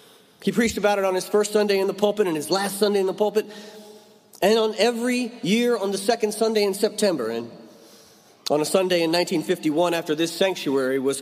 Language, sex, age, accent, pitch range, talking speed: English, male, 40-59, American, 150-195 Hz, 205 wpm